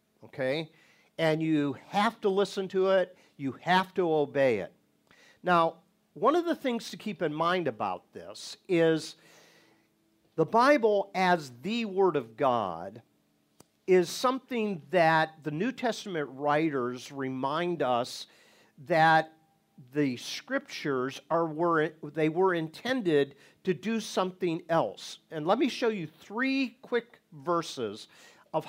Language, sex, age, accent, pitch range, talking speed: English, male, 50-69, American, 145-200 Hz, 130 wpm